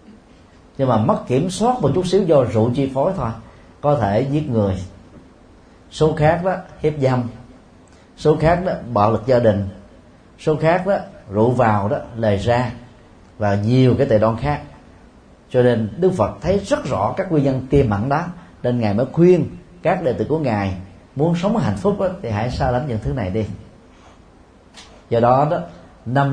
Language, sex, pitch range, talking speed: Vietnamese, male, 105-155 Hz, 185 wpm